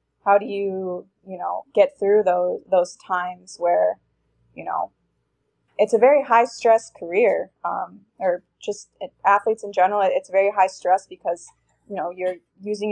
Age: 20-39